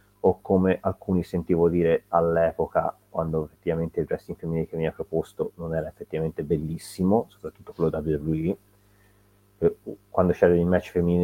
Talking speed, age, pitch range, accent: 145 wpm, 30-49, 80-100 Hz, native